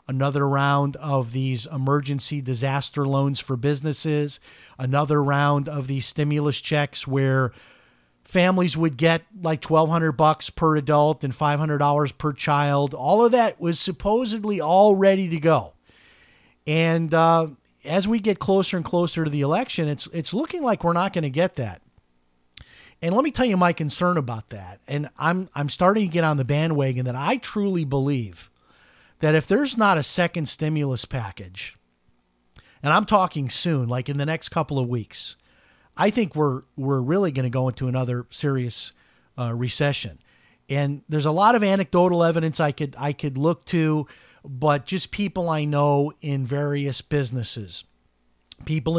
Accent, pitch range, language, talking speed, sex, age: American, 130-165 Hz, English, 170 wpm, male, 40-59